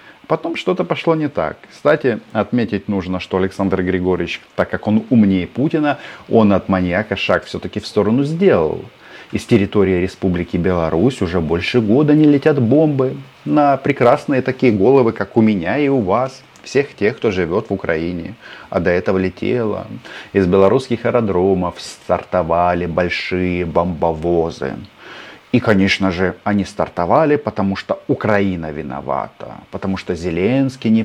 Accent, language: native, Russian